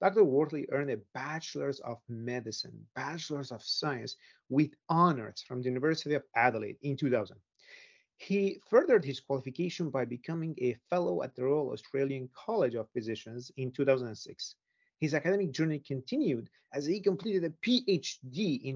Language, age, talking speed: English, 40-59, 145 wpm